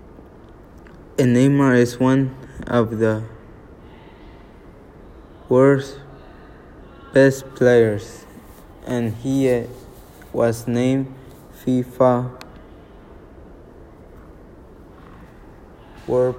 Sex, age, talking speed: male, 20-39, 60 wpm